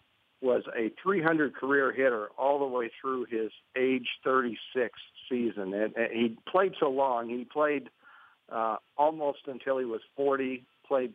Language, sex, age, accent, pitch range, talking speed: English, male, 50-69, American, 115-135 Hz, 150 wpm